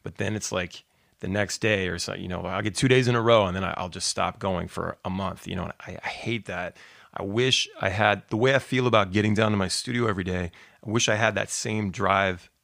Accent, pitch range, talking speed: American, 95-115 Hz, 270 wpm